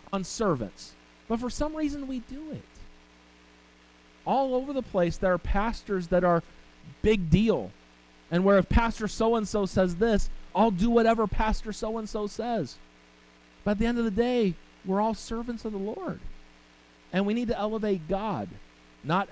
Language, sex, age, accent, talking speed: English, male, 40-59, American, 175 wpm